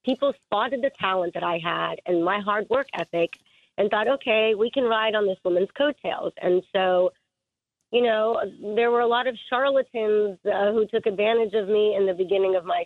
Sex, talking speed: female, 200 wpm